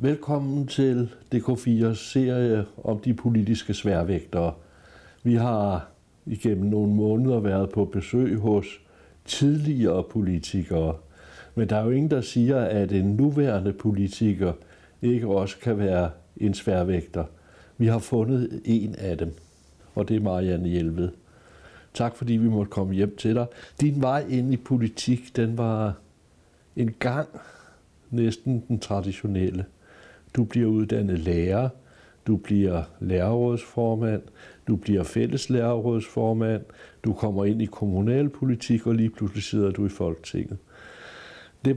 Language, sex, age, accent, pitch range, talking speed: Danish, male, 60-79, native, 95-120 Hz, 130 wpm